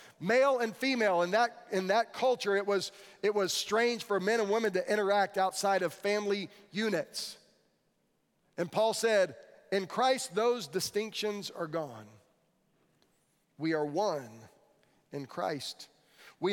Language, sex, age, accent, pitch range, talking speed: English, male, 40-59, American, 170-210 Hz, 130 wpm